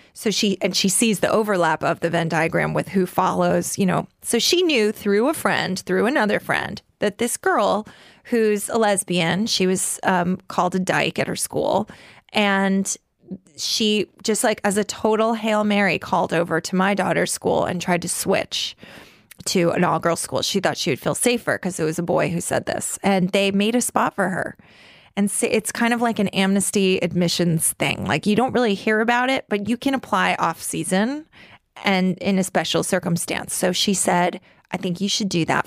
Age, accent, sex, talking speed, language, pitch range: 20-39, American, female, 205 wpm, English, 180-215 Hz